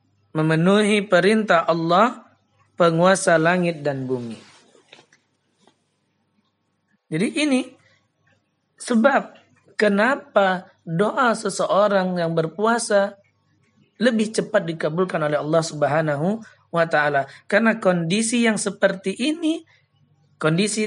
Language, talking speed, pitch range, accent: Indonesian, 85 wpm, 160-220 Hz, native